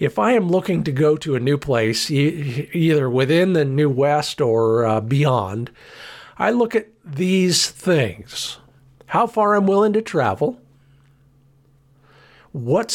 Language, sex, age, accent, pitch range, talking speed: English, male, 50-69, American, 125-155 Hz, 140 wpm